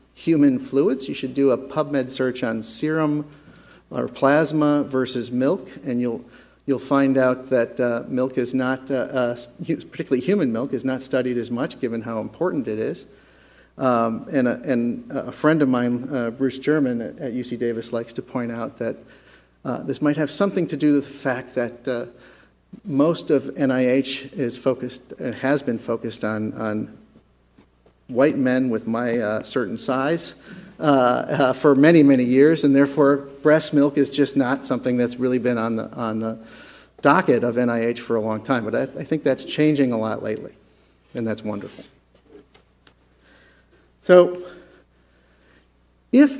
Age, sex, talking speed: 50-69, male, 170 wpm